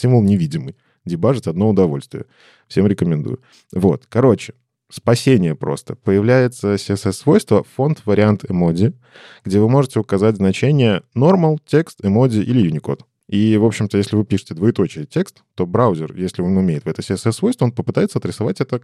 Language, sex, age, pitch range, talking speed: Russian, male, 20-39, 95-125 Hz, 135 wpm